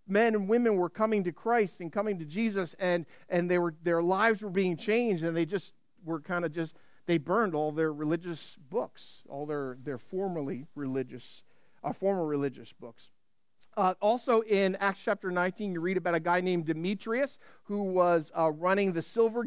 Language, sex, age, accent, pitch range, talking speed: English, male, 50-69, American, 165-210 Hz, 190 wpm